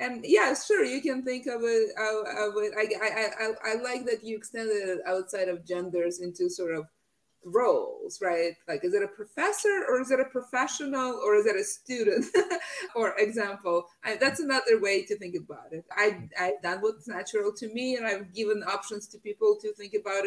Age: 20-39